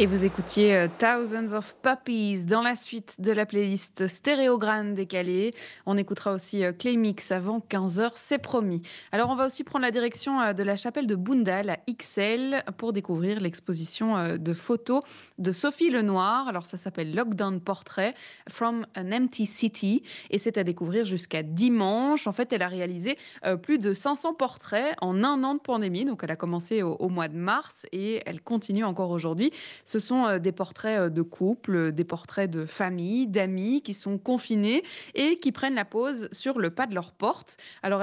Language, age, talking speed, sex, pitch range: French, 20-39, 190 wpm, female, 190-245 Hz